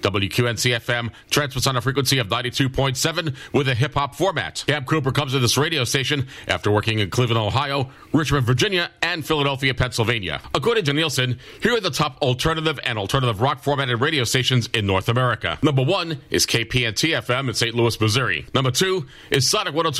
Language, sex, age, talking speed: English, male, 40-59, 170 wpm